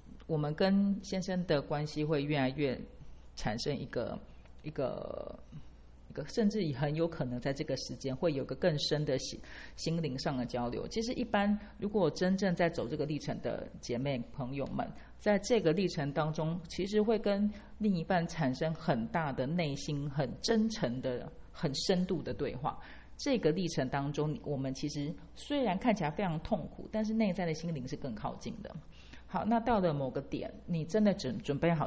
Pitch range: 130-175 Hz